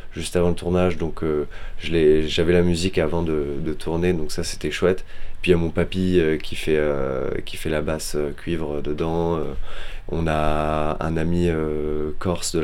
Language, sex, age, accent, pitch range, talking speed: French, male, 20-39, French, 75-90 Hz, 210 wpm